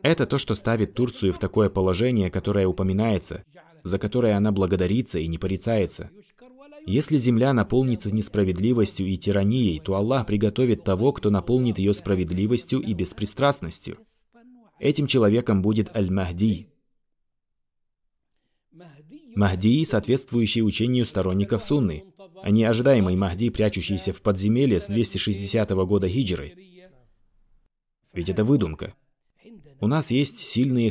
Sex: male